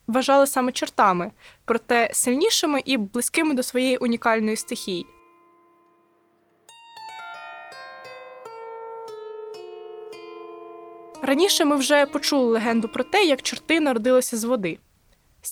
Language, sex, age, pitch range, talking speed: Ukrainian, female, 20-39, 230-290 Hz, 95 wpm